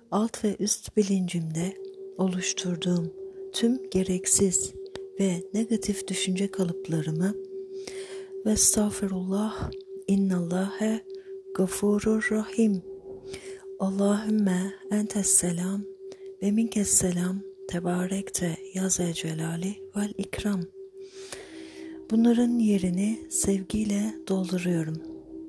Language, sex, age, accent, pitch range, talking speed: Turkish, female, 40-59, native, 180-220 Hz, 65 wpm